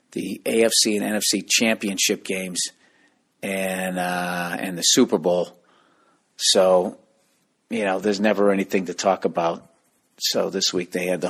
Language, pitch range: English, 95-130 Hz